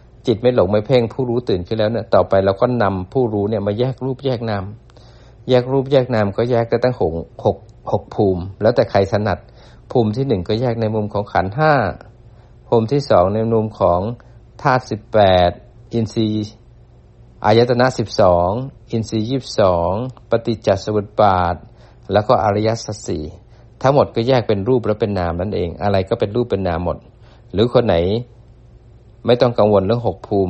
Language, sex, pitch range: Thai, male, 100-120 Hz